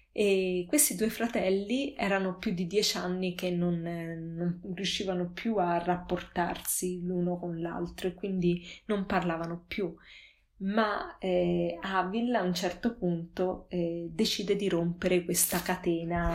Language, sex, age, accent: Italian, female, 20-39, native